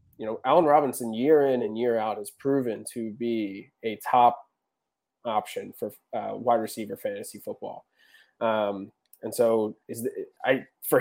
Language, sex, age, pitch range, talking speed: English, male, 20-39, 115-145 Hz, 160 wpm